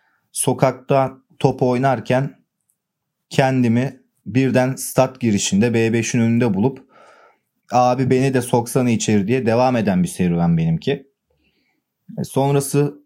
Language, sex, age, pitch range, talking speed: Turkish, male, 30-49, 115-145 Hz, 100 wpm